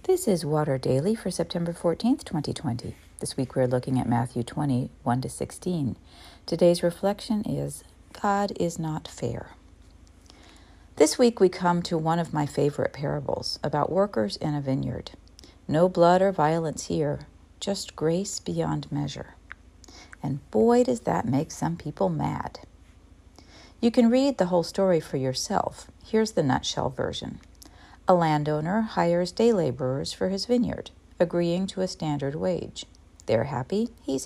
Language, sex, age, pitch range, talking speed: English, female, 50-69, 125-195 Hz, 150 wpm